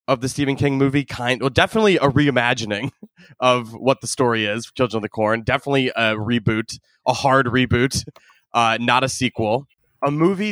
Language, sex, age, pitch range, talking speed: English, male, 20-39, 115-150 Hz, 175 wpm